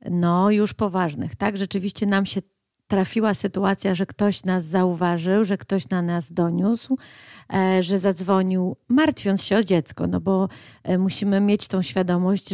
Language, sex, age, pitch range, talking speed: Polish, female, 30-49, 180-205 Hz, 145 wpm